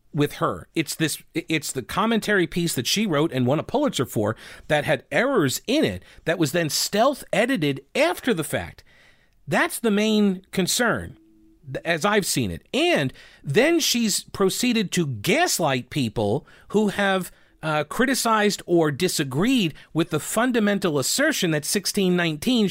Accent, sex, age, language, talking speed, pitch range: American, male, 40-59, English, 150 wpm, 150-215 Hz